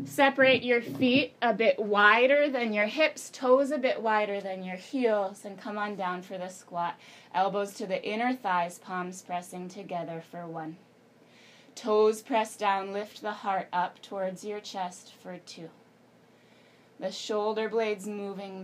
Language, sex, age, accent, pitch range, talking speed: English, female, 20-39, American, 195-235 Hz, 160 wpm